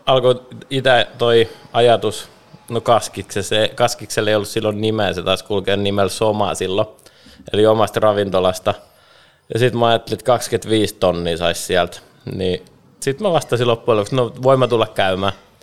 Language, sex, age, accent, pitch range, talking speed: Finnish, male, 20-39, native, 95-115 Hz, 155 wpm